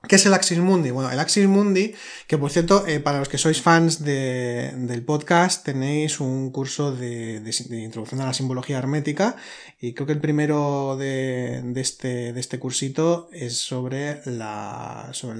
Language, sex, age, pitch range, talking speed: Spanish, male, 20-39, 135-180 Hz, 185 wpm